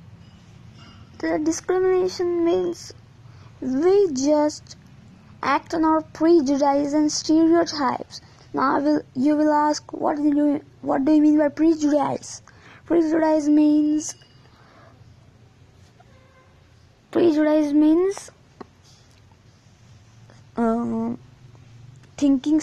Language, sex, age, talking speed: English, female, 20-39, 85 wpm